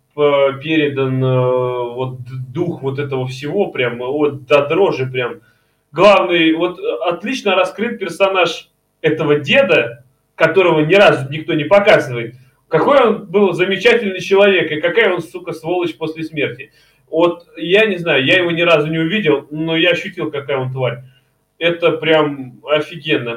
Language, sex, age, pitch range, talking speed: Russian, male, 20-39, 135-170 Hz, 145 wpm